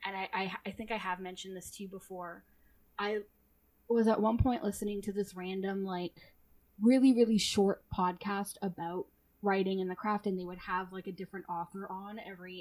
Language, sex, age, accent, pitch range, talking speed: English, female, 10-29, American, 185-220 Hz, 195 wpm